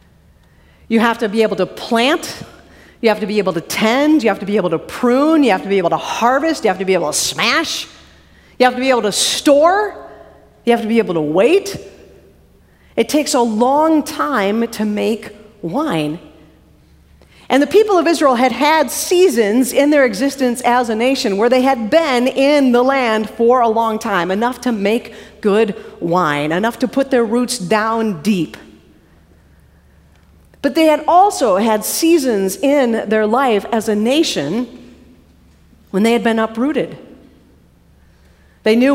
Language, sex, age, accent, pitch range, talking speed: English, female, 40-59, American, 190-260 Hz, 175 wpm